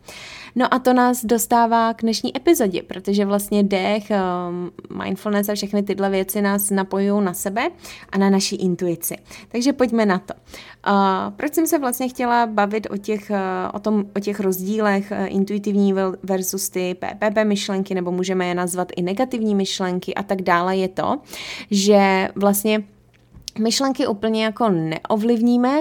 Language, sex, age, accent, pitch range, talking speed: Czech, female, 20-39, native, 190-225 Hz, 140 wpm